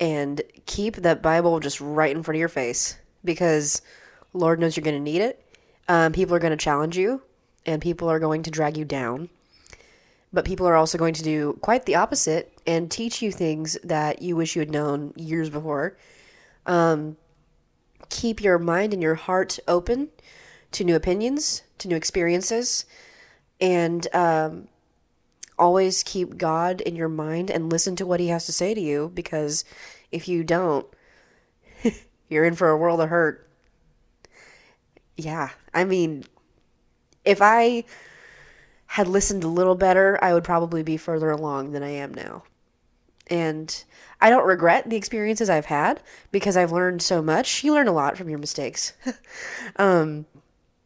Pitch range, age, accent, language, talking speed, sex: 155-185 Hz, 20-39, American, English, 165 wpm, female